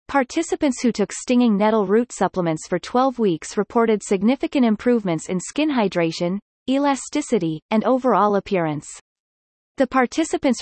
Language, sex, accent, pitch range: English, female, American, 190-255 Hz